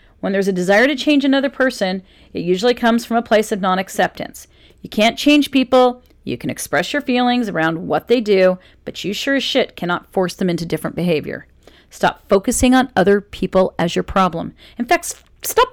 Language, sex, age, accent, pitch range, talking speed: English, female, 40-59, American, 195-280 Hz, 200 wpm